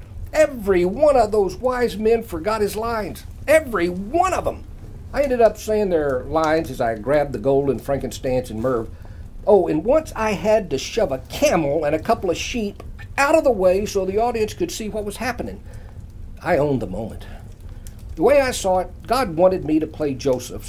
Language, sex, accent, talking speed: English, male, American, 200 wpm